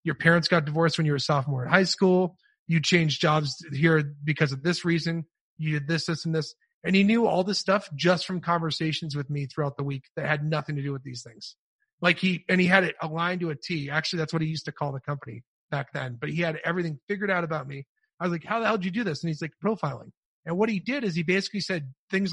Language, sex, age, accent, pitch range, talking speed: English, male, 30-49, American, 150-180 Hz, 270 wpm